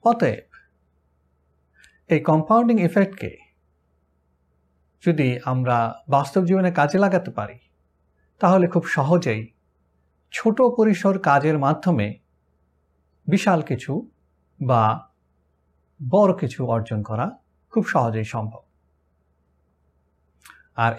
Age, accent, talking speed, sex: 60-79, native, 85 wpm, male